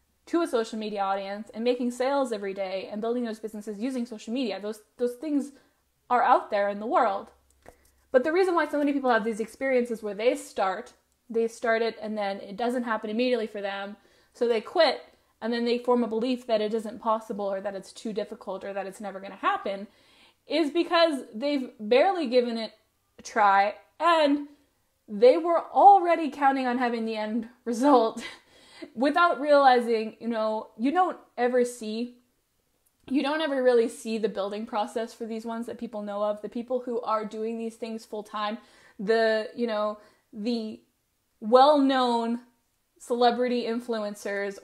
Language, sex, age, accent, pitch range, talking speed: English, female, 20-39, American, 215-260 Hz, 175 wpm